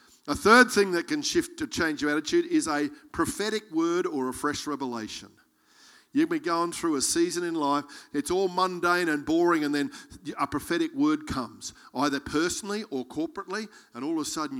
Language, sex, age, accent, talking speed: English, male, 50-69, Australian, 190 wpm